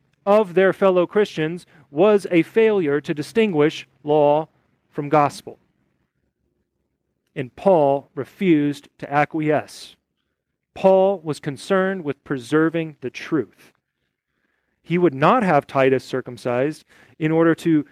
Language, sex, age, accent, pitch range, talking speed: English, male, 40-59, American, 145-210 Hz, 110 wpm